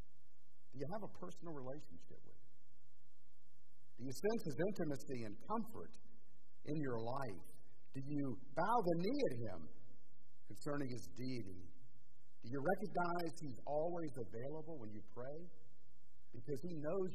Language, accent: English, American